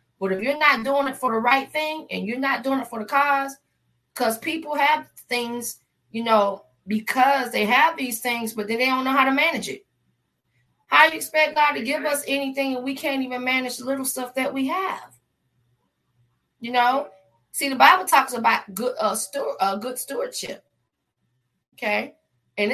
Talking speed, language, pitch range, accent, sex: 195 wpm, English, 205-270 Hz, American, female